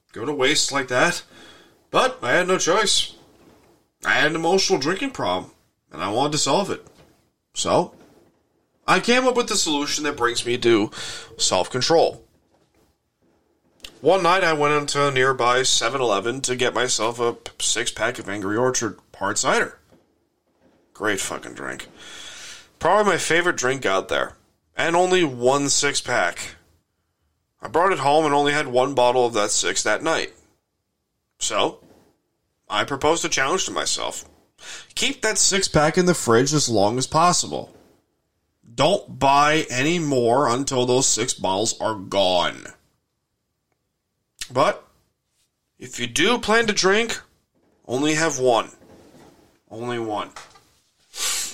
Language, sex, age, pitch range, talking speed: English, male, 20-39, 120-165 Hz, 135 wpm